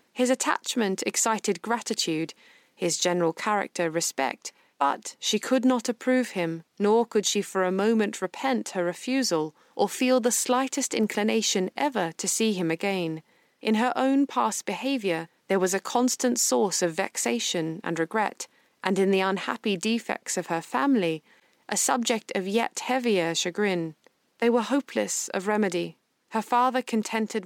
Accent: British